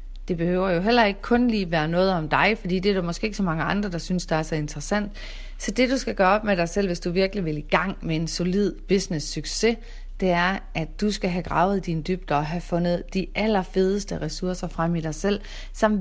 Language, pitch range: Danish, 160-200 Hz